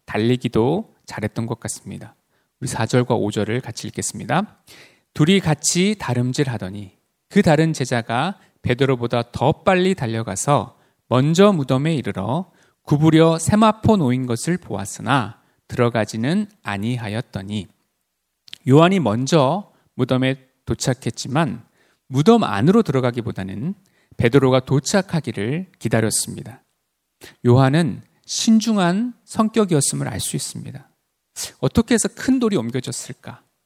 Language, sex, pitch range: Korean, male, 120-175 Hz